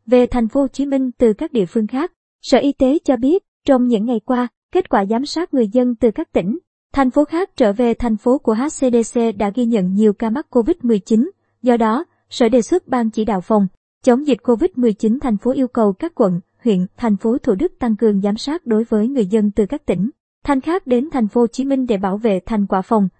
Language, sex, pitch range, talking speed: Vietnamese, male, 220-270 Hz, 240 wpm